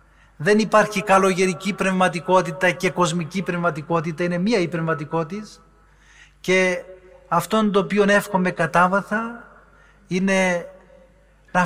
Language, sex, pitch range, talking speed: Greek, male, 175-200 Hz, 100 wpm